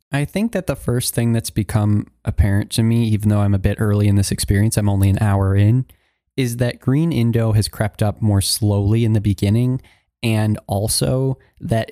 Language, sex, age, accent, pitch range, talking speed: English, male, 20-39, American, 100-120 Hz, 200 wpm